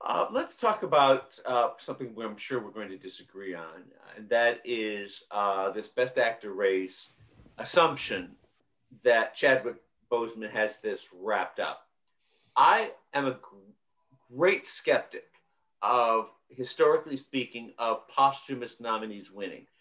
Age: 50-69